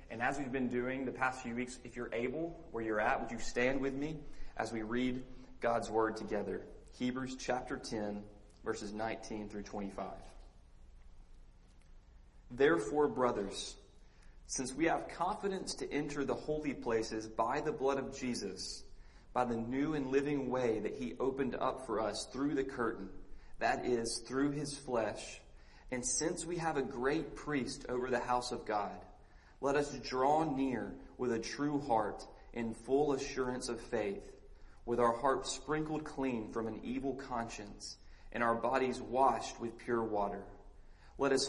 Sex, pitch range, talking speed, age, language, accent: male, 110-135 Hz, 160 wpm, 30-49, English, American